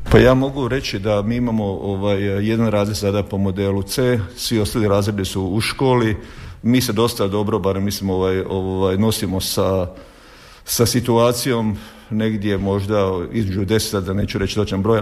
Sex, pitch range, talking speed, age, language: male, 100-115 Hz, 165 wpm, 50-69, Croatian